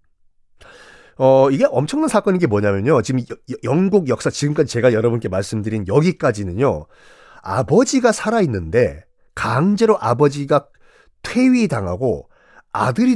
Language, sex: Korean, male